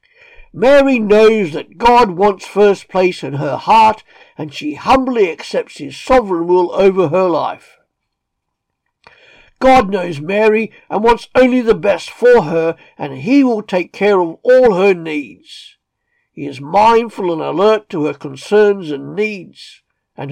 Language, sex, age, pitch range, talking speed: English, male, 60-79, 180-245 Hz, 150 wpm